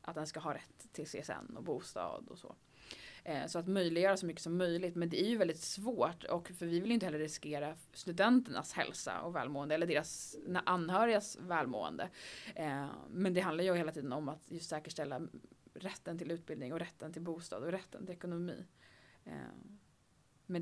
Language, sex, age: English, female, 20-39